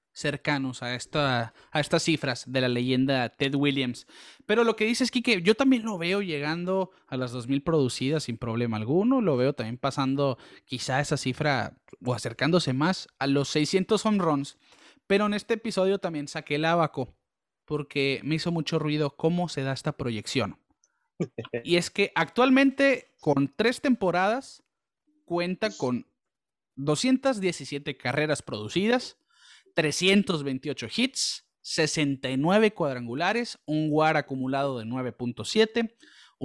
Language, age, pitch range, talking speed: Spanish, 30-49, 130-190 Hz, 135 wpm